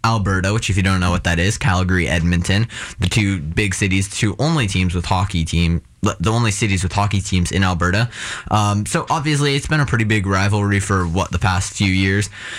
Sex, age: male, 20-39